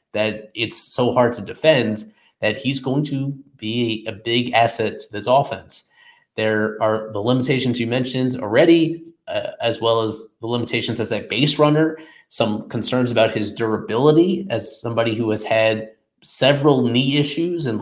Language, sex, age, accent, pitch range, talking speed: English, male, 20-39, American, 110-135 Hz, 160 wpm